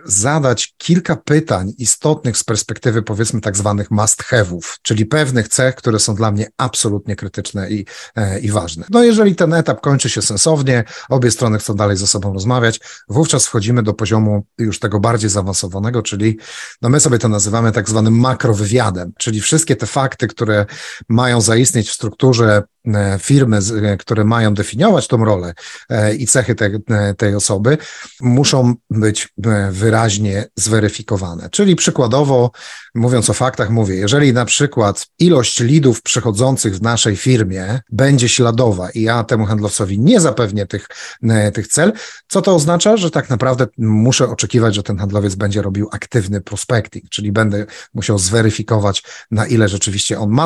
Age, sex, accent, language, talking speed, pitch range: 30-49, male, native, Polish, 150 wpm, 105-125 Hz